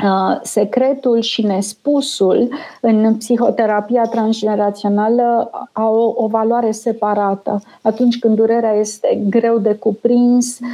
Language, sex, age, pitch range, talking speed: Romanian, female, 30-49, 205-240 Hz, 100 wpm